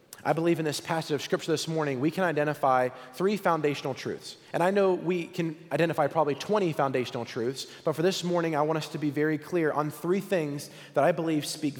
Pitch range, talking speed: 145-180 Hz, 220 wpm